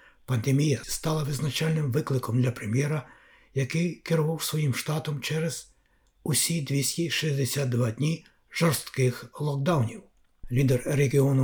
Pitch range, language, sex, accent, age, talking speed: 130-155 Hz, Ukrainian, male, native, 60-79, 95 wpm